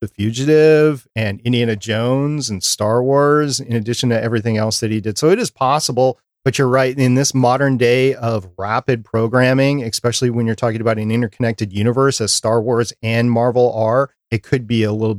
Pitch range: 110-135 Hz